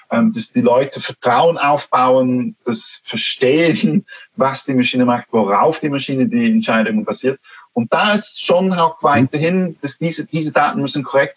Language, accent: German, German